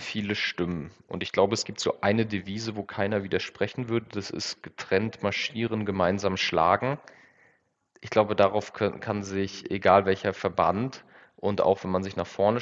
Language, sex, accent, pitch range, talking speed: German, male, German, 90-110 Hz, 165 wpm